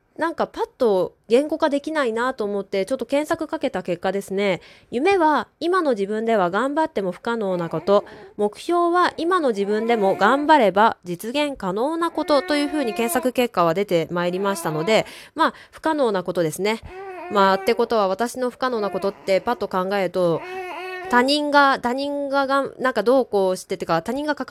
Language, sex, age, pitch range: Japanese, female, 20-39, 195-295 Hz